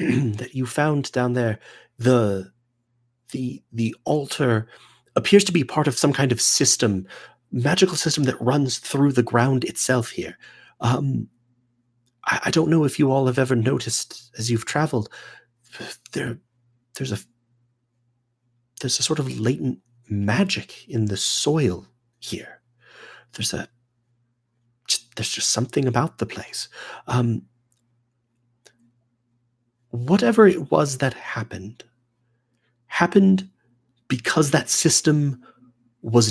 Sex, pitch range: male, 120-130 Hz